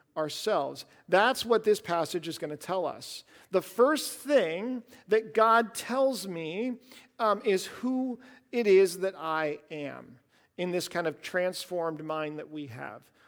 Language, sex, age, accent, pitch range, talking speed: English, male, 50-69, American, 170-230 Hz, 155 wpm